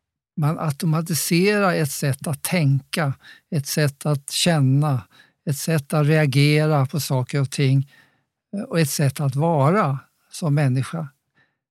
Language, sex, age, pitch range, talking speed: English, male, 50-69, 140-180 Hz, 130 wpm